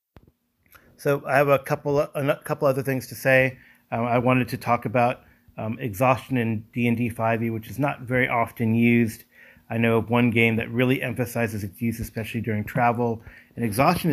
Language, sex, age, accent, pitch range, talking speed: English, male, 30-49, American, 110-130 Hz, 185 wpm